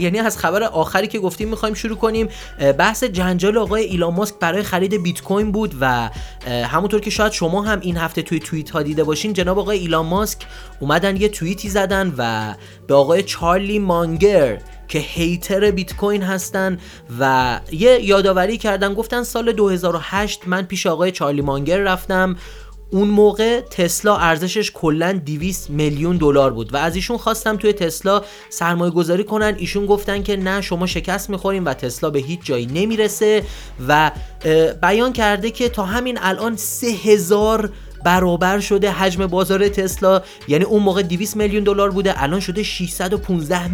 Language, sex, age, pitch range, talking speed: Persian, male, 30-49, 165-205 Hz, 160 wpm